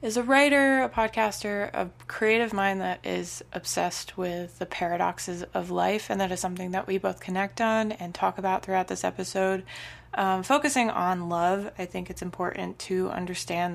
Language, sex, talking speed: English, female, 180 wpm